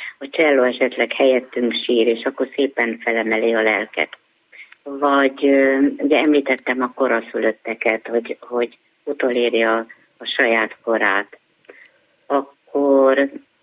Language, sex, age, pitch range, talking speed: Hungarian, female, 30-49, 115-135 Hz, 110 wpm